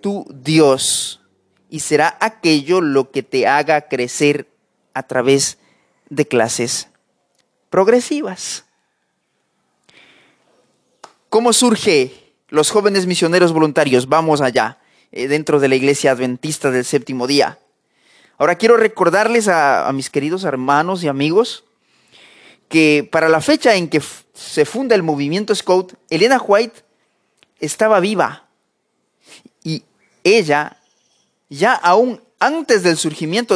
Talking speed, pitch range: 110 wpm, 145-210 Hz